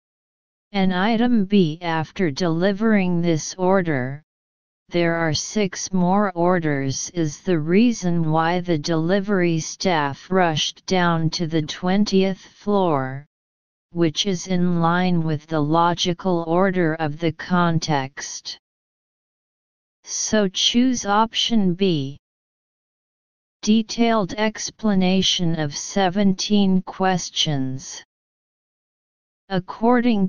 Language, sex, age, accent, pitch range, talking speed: English, female, 40-59, American, 160-195 Hz, 90 wpm